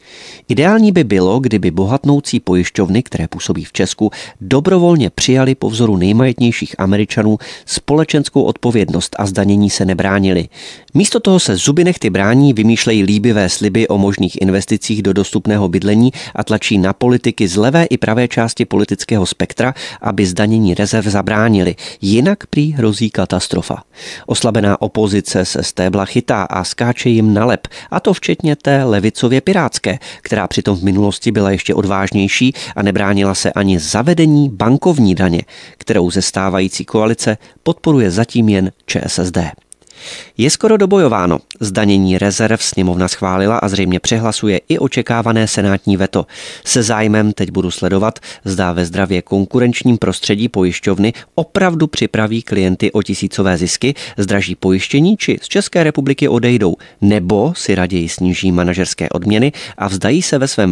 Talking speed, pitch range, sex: 140 wpm, 95-125 Hz, male